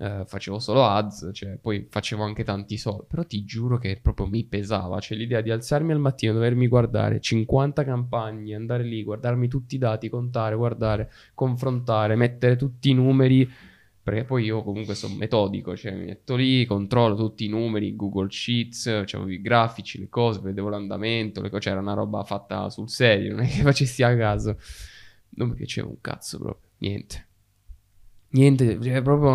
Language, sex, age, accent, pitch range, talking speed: Italian, male, 10-29, native, 105-125 Hz, 180 wpm